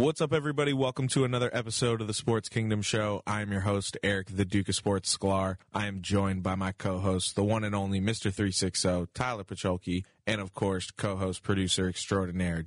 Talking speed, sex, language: 200 wpm, male, English